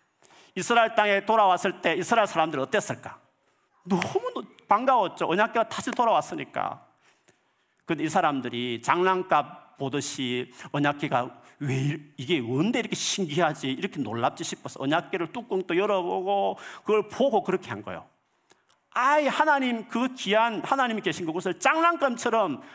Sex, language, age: male, Korean, 40-59